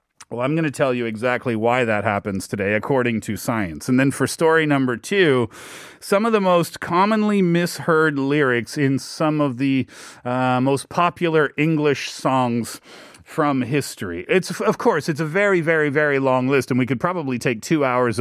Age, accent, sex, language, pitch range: 30-49, American, male, Korean, 125-165 Hz